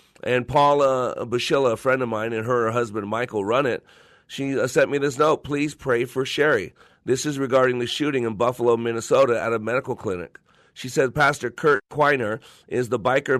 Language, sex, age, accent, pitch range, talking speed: English, male, 40-59, American, 115-145 Hz, 190 wpm